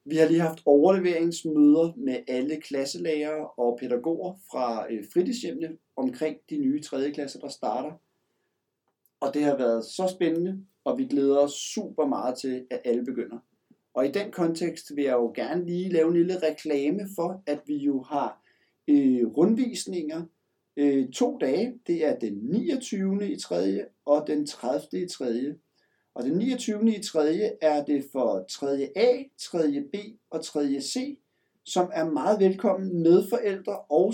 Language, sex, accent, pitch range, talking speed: Danish, male, native, 145-215 Hz, 155 wpm